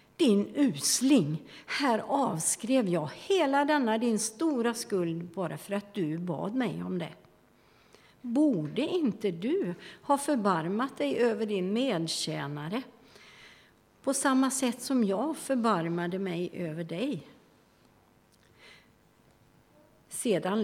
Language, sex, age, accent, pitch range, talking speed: Swedish, female, 50-69, native, 175-240 Hz, 110 wpm